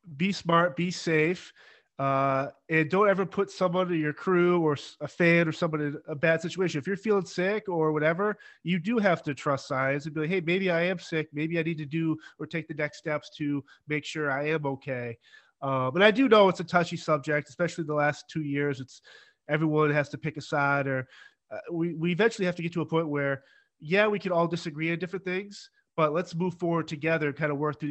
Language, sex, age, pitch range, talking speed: English, male, 30-49, 150-175 Hz, 235 wpm